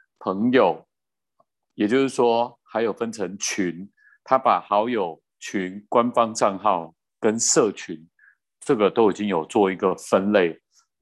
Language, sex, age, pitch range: Chinese, male, 30-49, 95-115 Hz